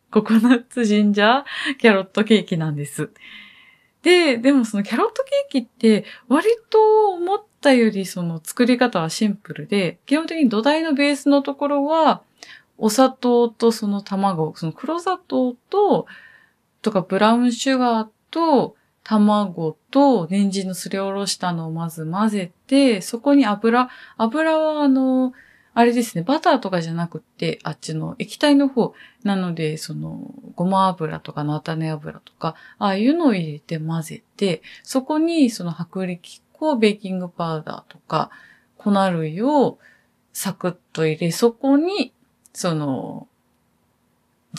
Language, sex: Japanese, female